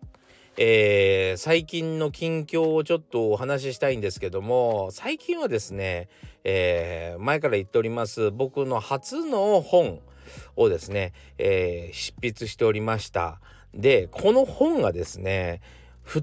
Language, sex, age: Japanese, male, 40-59